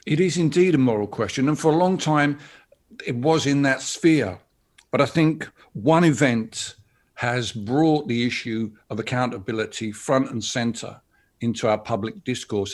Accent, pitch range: British, 110-140 Hz